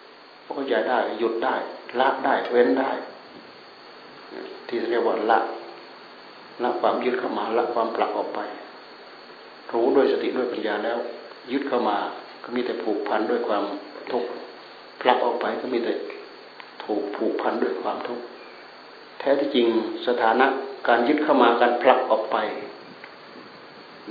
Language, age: Thai, 60-79